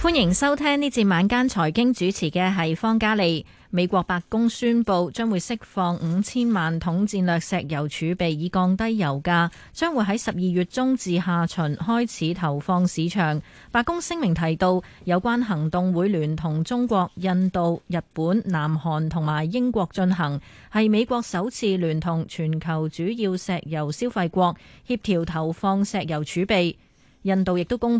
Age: 20-39